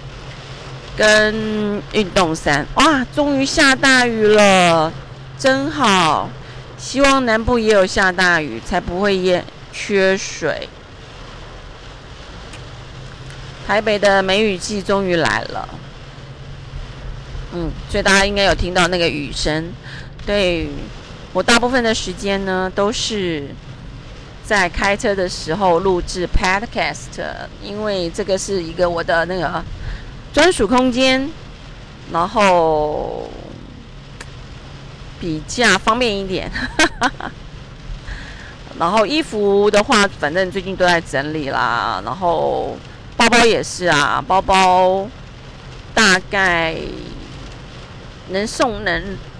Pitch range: 150-205 Hz